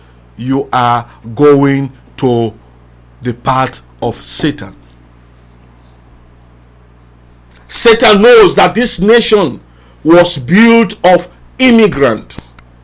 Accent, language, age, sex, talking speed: Nigerian, English, 50-69, male, 80 wpm